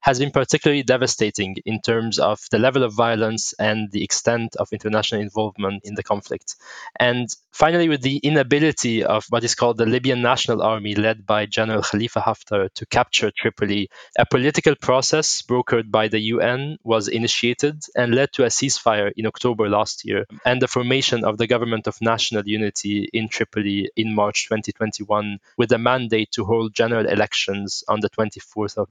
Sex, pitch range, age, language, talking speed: male, 110-130 Hz, 20-39, English, 175 wpm